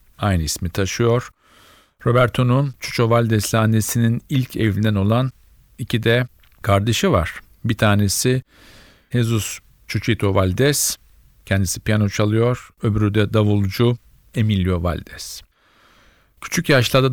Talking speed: 100 wpm